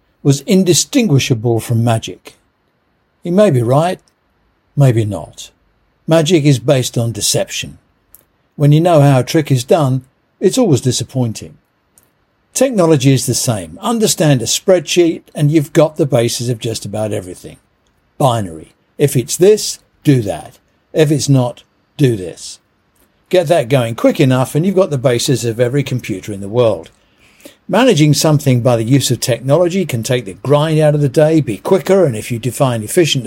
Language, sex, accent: English, male, British